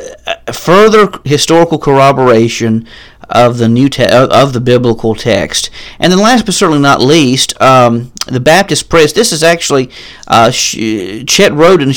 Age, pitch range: 40-59, 120-155 Hz